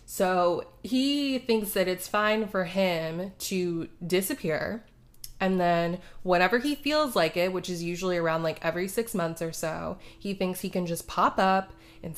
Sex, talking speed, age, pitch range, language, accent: female, 170 wpm, 20-39, 175-240 Hz, English, American